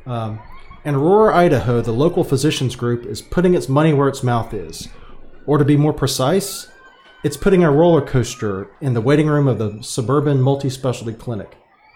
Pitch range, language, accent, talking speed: 120-150 Hz, English, American, 175 wpm